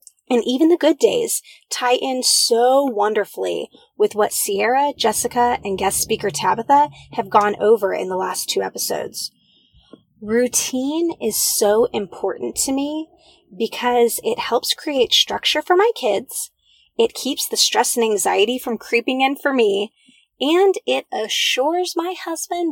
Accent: American